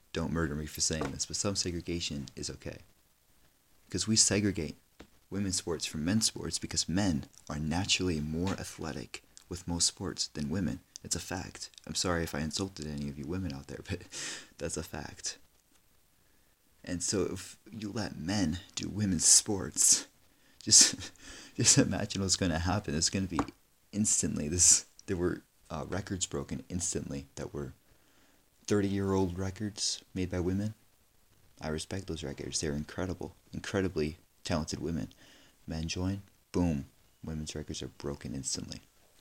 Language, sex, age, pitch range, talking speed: English, male, 30-49, 75-100 Hz, 155 wpm